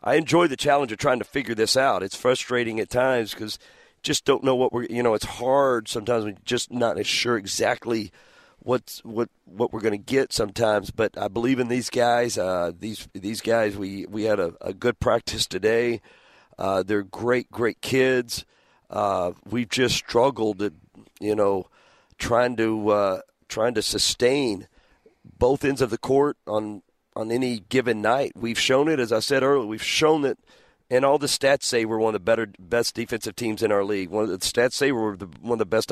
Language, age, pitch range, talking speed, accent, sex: English, 50-69, 105-130 Hz, 200 wpm, American, male